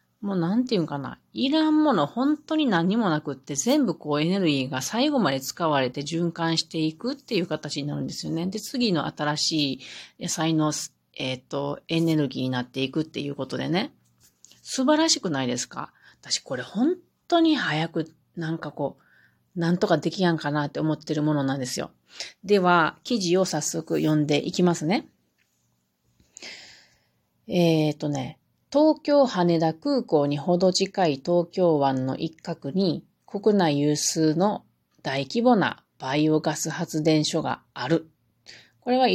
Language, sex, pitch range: Japanese, female, 145-190 Hz